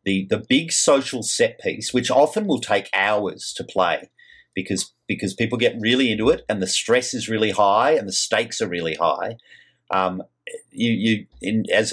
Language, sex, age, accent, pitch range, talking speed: English, male, 40-59, Australian, 100-135 Hz, 185 wpm